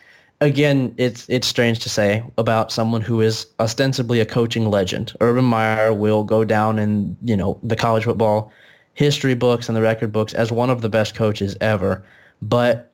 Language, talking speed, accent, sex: English, 180 wpm, American, male